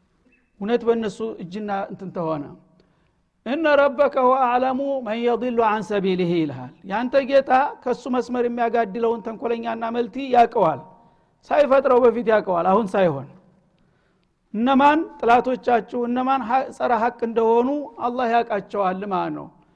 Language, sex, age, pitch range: Amharic, male, 60-79, 210-260 Hz